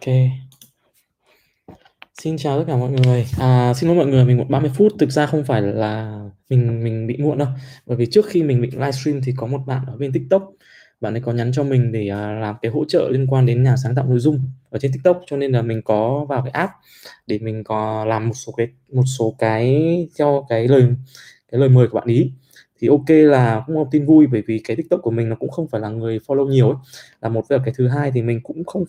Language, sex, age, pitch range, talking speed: Vietnamese, male, 20-39, 120-150 Hz, 250 wpm